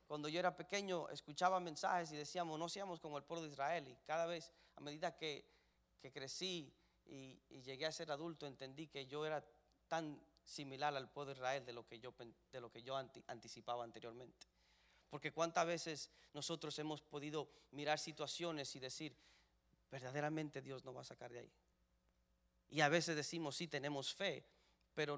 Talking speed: 180 wpm